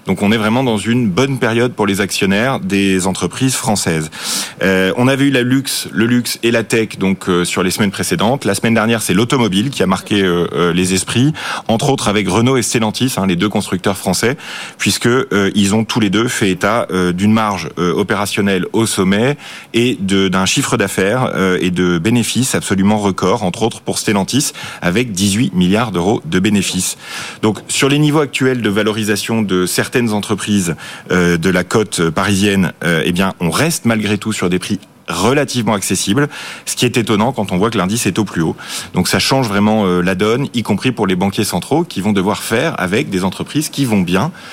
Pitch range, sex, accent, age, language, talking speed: 95-120 Hz, male, French, 30-49, French, 205 wpm